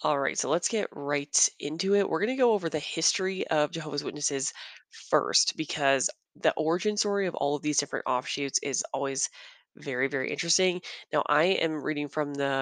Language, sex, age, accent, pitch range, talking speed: English, female, 20-39, American, 140-175 Hz, 185 wpm